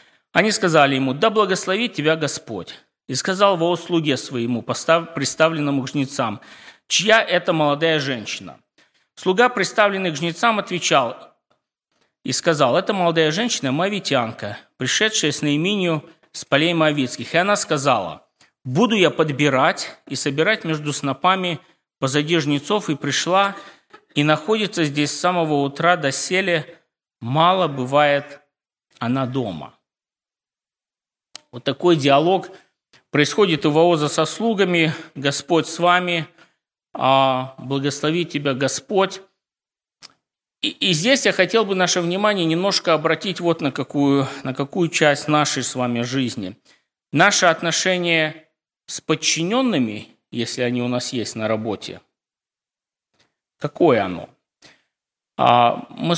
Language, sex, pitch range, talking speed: Russian, male, 140-180 Hz, 115 wpm